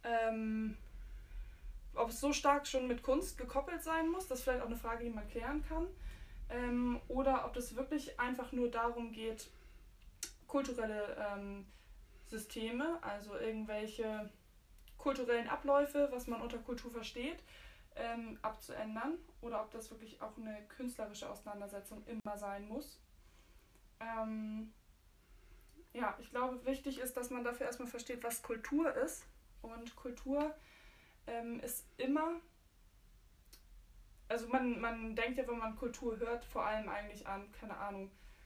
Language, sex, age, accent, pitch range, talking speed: German, female, 20-39, German, 215-250 Hz, 140 wpm